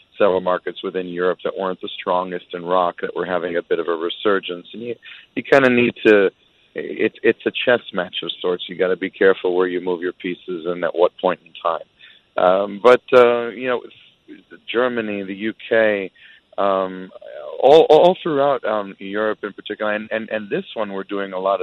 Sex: male